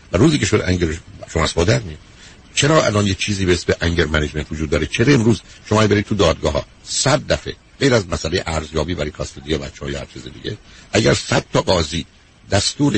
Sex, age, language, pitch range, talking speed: male, 60-79, Persian, 85-115 Hz, 205 wpm